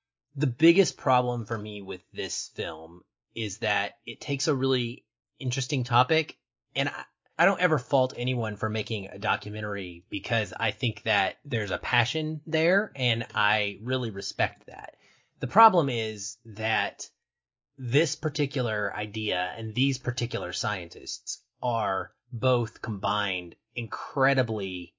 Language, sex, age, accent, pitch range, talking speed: English, male, 30-49, American, 115-160 Hz, 130 wpm